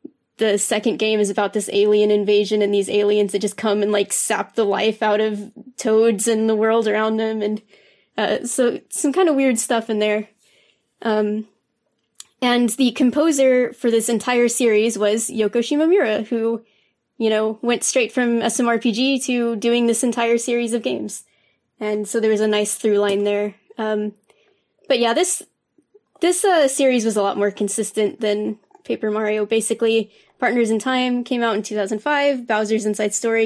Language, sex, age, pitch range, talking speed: English, female, 20-39, 210-235 Hz, 175 wpm